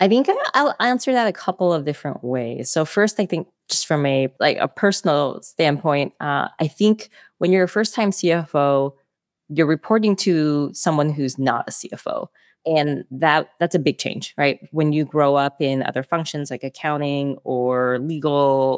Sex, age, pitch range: female, 20-39, 140-180 Hz